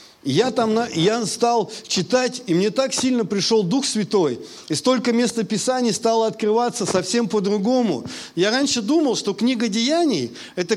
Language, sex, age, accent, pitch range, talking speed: Russian, male, 50-69, native, 190-250 Hz, 155 wpm